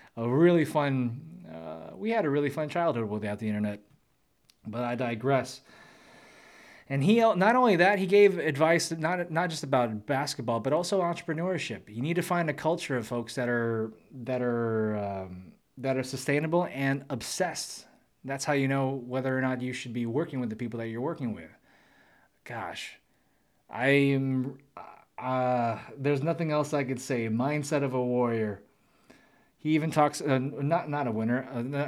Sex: male